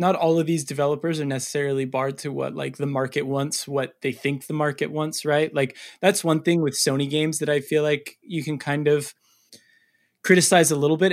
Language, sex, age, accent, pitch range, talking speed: English, male, 20-39, American, 130-155 Hz, 215 wpm